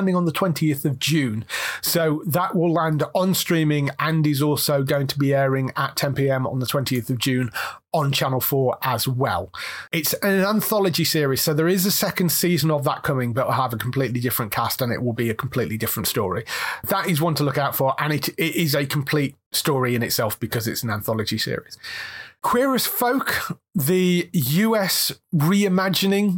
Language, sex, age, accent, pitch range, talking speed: English, male, 30-49, British, 130-170 Hz, 195 wpm